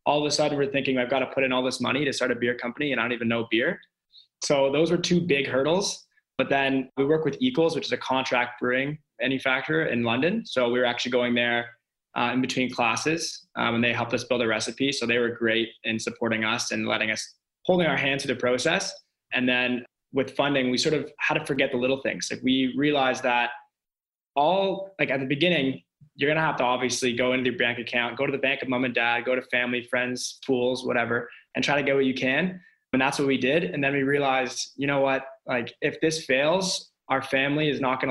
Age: 20-39